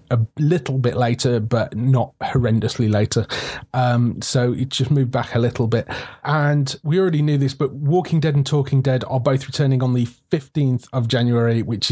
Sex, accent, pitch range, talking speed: male, British, 120-150 Hz, 185 wpm